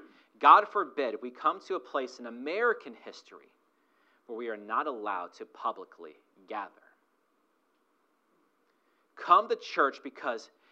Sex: male